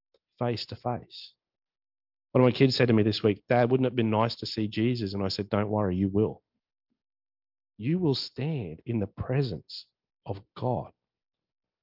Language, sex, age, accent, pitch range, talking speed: English, male, 40-59, Australian, 110-145 Hz, 170 wpm